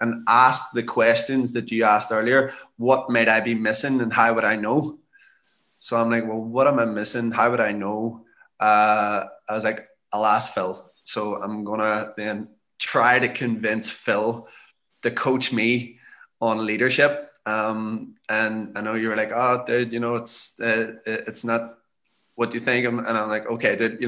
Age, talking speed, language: 20-39, 185 wpm, English